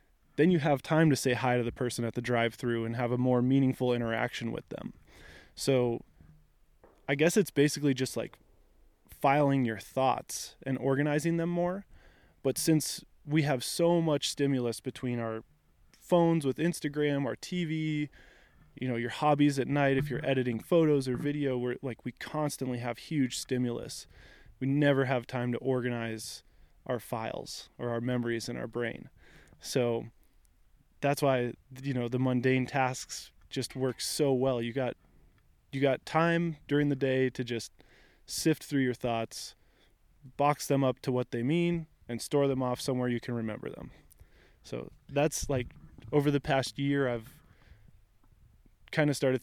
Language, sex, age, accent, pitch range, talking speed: English, male, 20-39, American, 120-140 Hz, 165 wpm